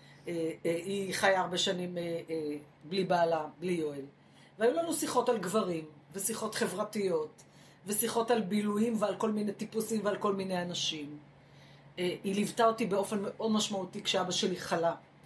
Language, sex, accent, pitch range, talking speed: Hebrew, female, native, 170-210 Hz, 140 wpm